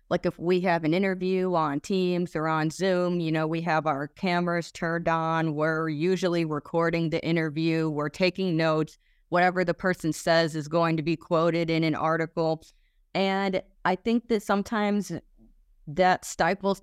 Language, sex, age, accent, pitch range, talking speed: English, female, 30-49, American, 165-190 Hz, 165 wpm